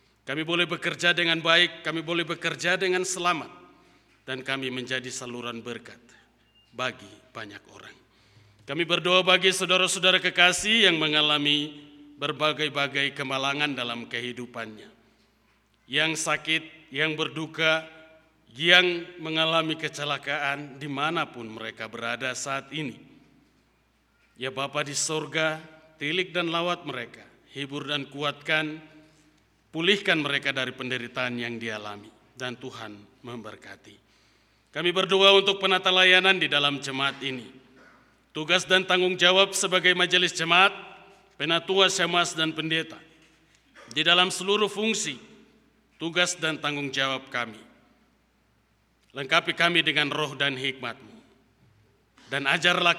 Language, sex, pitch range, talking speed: Indonesian, male, 130-170 Hz, 110 wpm